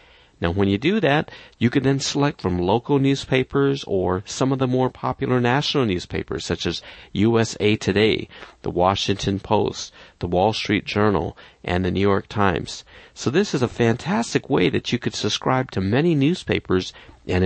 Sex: male